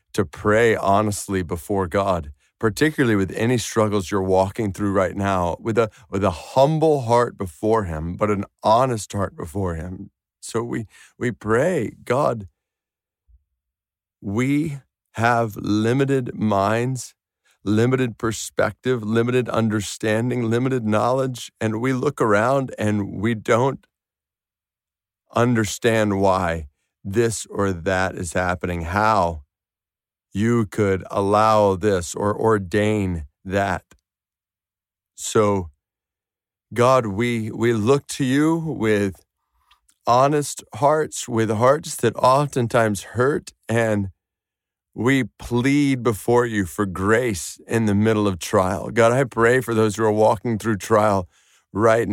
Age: 40-59